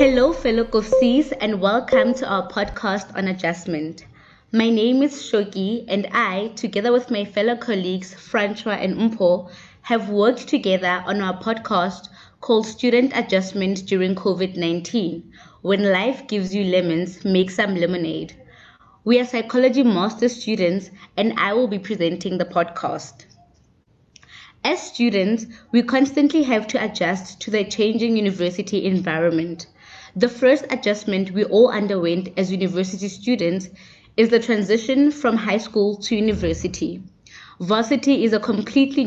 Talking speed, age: 135 wpm, 20-39